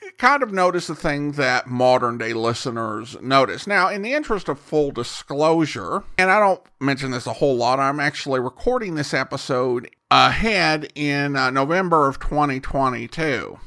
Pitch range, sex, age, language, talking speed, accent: 130-200 Hz, male, 50-69, English, 155 wpm, American